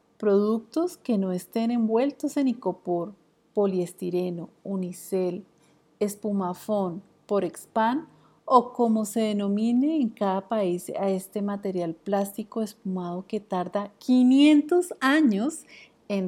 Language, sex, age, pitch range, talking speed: Spanish, female, 40-59, 185-225 Hz, 105 wpm